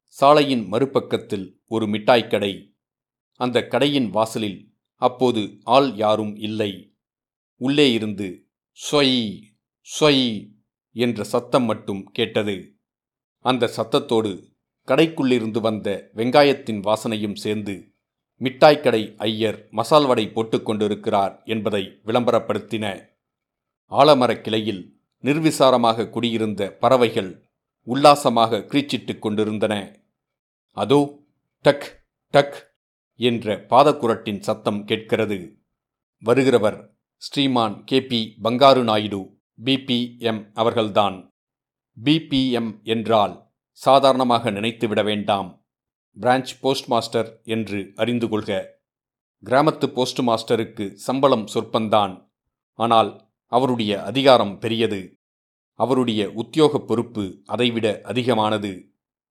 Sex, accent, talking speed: male, native, 80 wpm